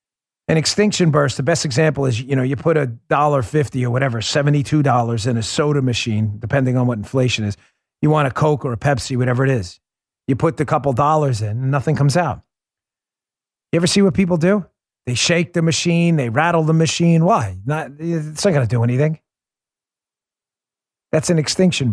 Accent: American